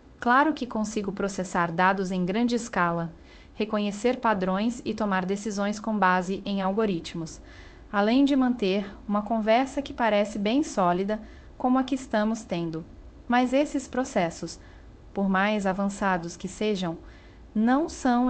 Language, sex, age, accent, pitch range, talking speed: Portuguese, female, 30-49, Brazilian, 180-225 Hz, 135 wpm